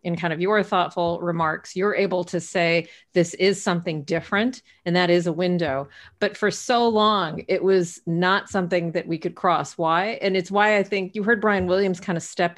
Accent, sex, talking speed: American, female, 210 wpm